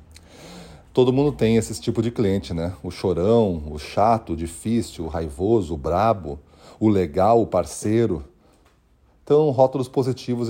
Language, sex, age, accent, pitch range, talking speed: Portuguese, male, 40-59, Brazilian, 90-115 Hz, 145 wpm